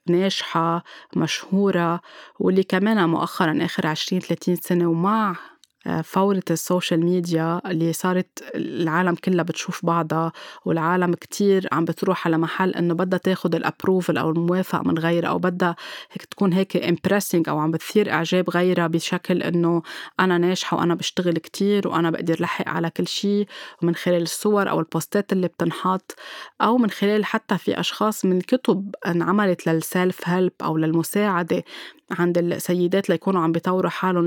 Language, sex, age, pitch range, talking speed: Arabic, female, 20-39, 170-195 Hz, 145 wpm